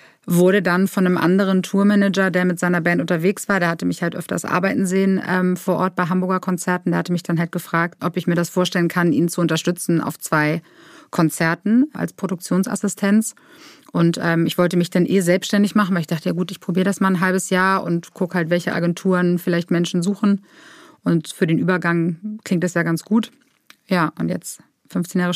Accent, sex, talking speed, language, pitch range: German, female, 210 wpm, German, 175-200 Hz